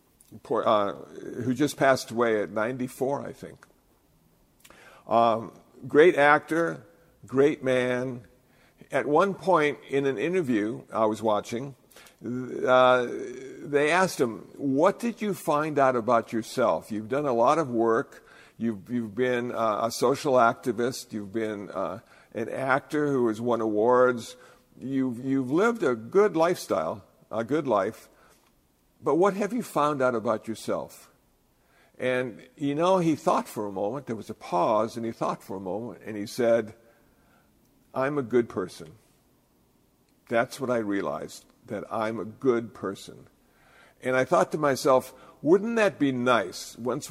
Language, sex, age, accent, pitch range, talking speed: English, male, 50-69, American, 115-145 Hz, 150 wpm